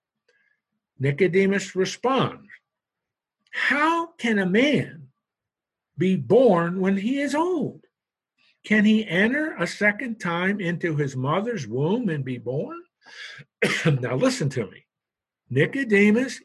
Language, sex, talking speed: English, male, 110 wpm